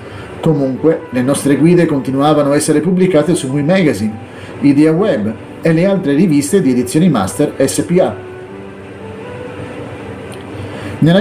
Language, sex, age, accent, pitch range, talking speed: Italian, male, 40-59, native, 115-170 Hz, 120 wpm